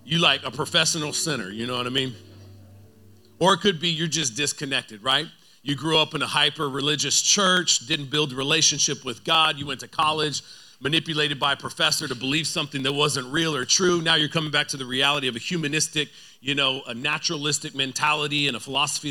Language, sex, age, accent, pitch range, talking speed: English, male, 40-59, American, 125-155 Hz, 205 wpm